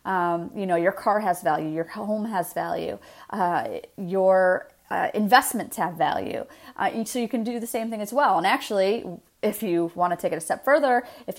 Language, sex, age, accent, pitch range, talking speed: English, female, 30-49, American, 185-250 Hz, 205 wpm